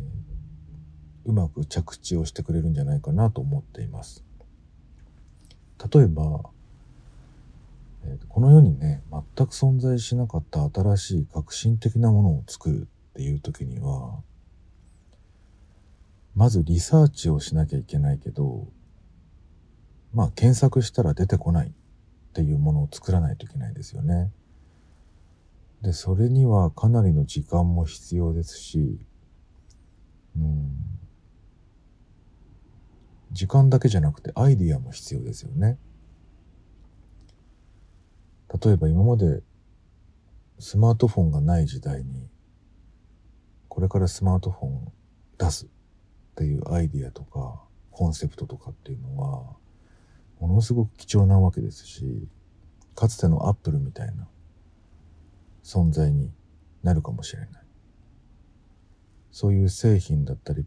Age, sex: 50-69, male